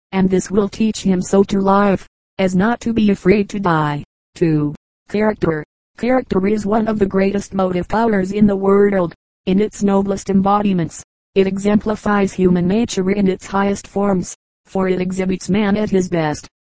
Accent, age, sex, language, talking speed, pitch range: American, 40-59, female, English, 170 wpm, 190-210 Hz